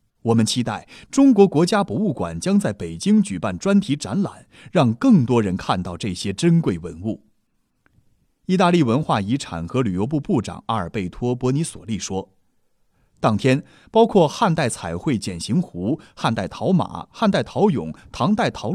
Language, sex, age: Chinese, male, 30-49